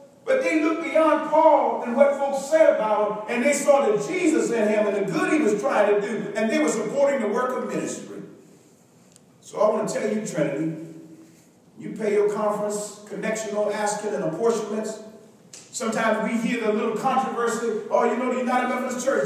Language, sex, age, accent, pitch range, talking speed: English, male, 40-59, American, 210-295 Hz, 195 wpm